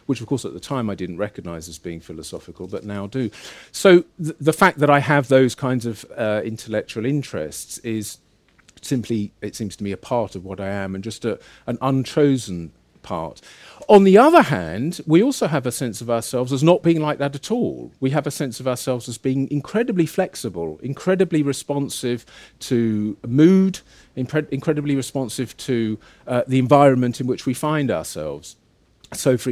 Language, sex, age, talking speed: English, male, 40-59, 180 wpm